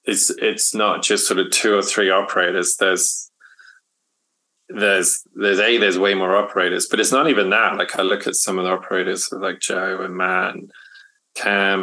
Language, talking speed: English, 190 wpm